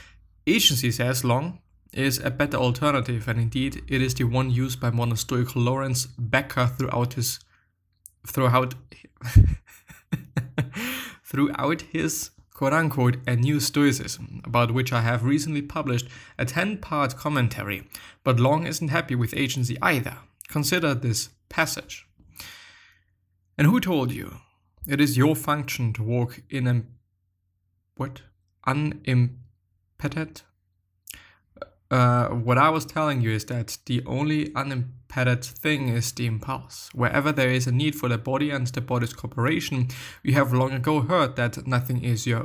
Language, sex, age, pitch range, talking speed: English, male, 20-39, 115-140 Hz, 135 wpm